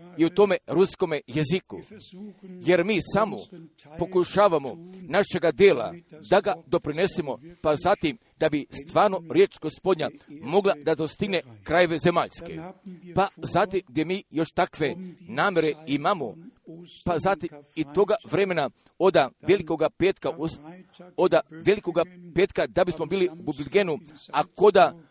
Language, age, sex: Croatian, 50-69, male